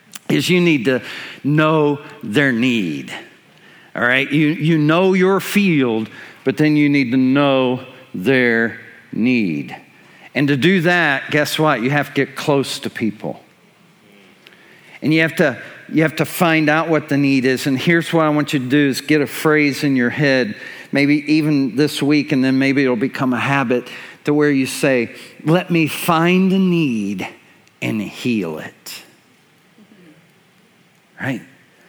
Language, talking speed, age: English, 165 wpm, 50-69